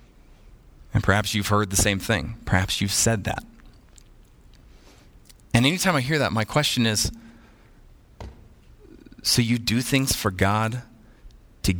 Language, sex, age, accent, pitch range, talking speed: English, male, 30-49, American, 100-125 Hz, 130 wpm